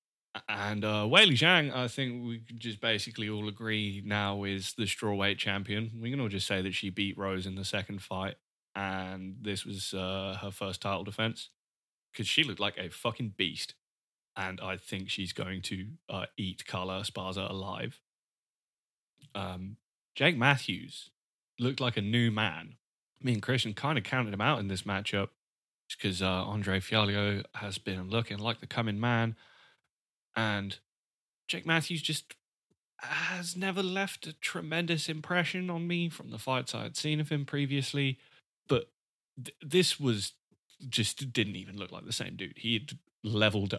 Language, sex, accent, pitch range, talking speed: English, male, British, 100-135 Hz, 165 wpm